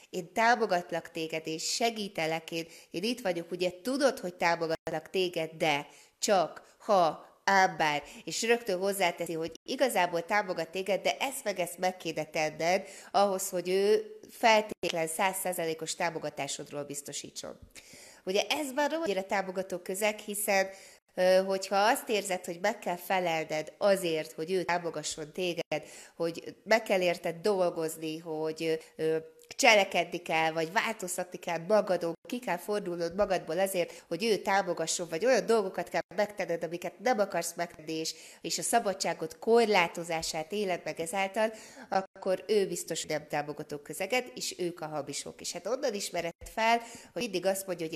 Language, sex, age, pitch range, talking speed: Hungarian, female, 30-49, 160-205 Hz, 145 wpm